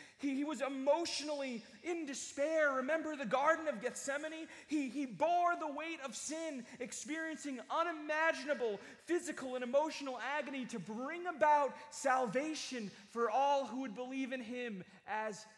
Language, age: English, 30-49